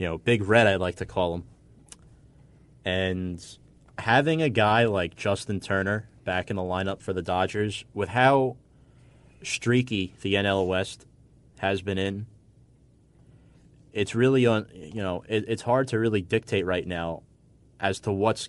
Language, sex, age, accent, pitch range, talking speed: English, male, 30-49, American, 95-130 Hz, 155 wpm